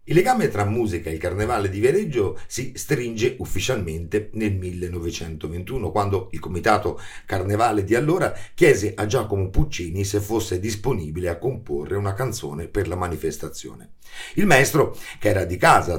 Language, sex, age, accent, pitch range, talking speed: Italian, male, 50-69, native, 90-120 Hz, 150 wpm